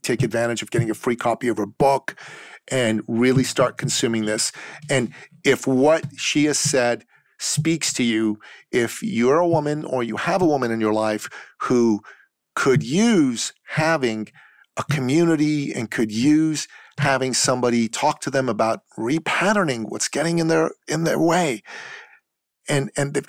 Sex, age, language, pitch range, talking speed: male, 40-59, English, 110-155 Hz, 160 wpm